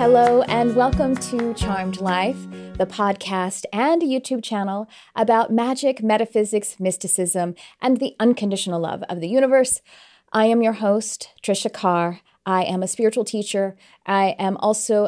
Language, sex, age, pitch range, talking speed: English, female, 30-49, 180-230 Hz, 145 wpm